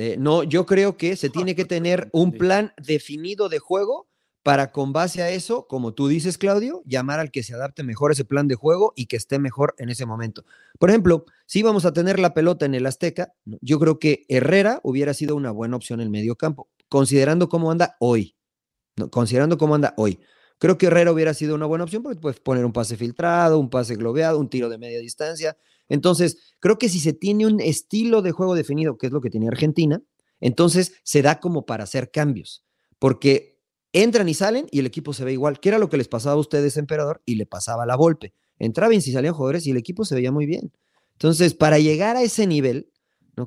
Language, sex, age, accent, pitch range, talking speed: English, male, 40-59, Mexican, 130-175 Hz, 225 wpm